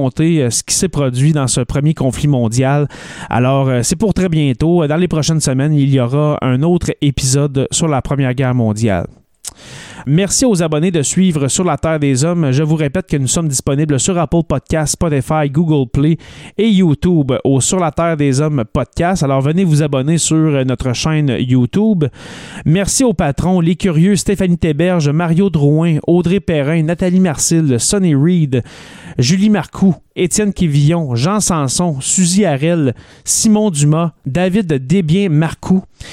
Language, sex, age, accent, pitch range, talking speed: French, male, 30-49, Canadian, 140-180 Hz, 160 wpm